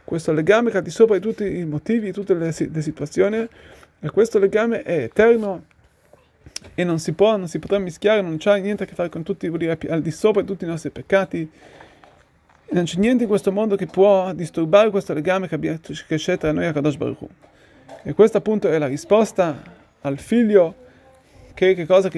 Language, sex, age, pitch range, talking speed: Italian, male, 30-49, 185-235 Hz, 200 wpm